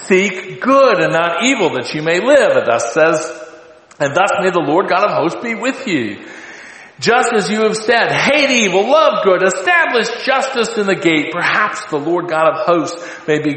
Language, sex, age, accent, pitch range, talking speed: English, male, 50-69, American, 155-210 Hz, 200 wpm